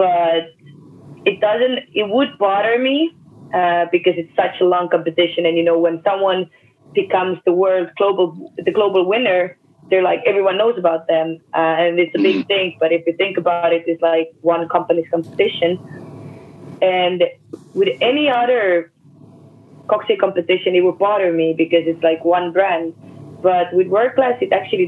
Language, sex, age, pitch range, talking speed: English, female, 20-39, 165-195 Hz, 170 wpm